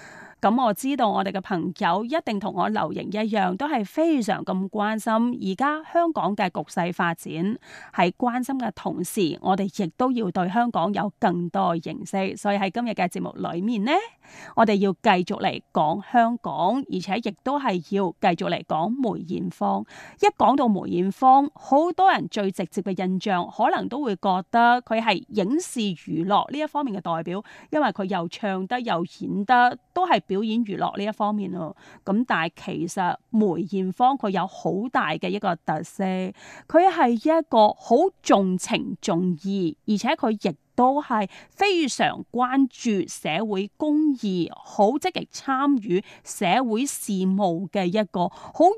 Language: Chinese